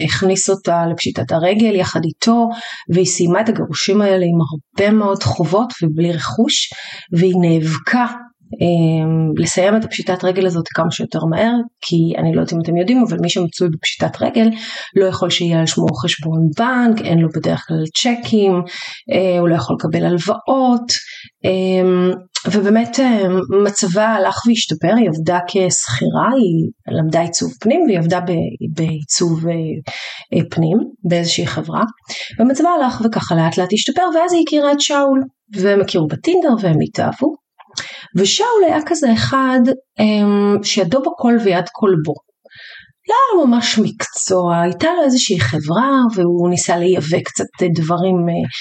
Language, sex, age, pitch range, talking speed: Hebrew, female, 30-49, 170-230 Hz, 145 wpm